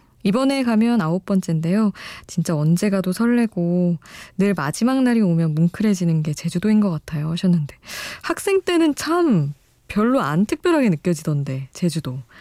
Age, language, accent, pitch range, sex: 20-39, Korean, native, 155-210 Hz, female